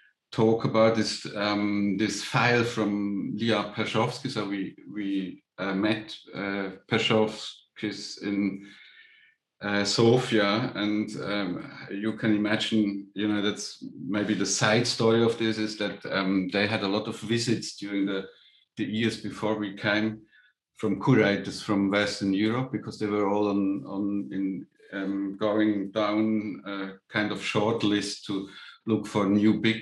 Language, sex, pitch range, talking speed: English, male, 100-110 Hz, 150 wpm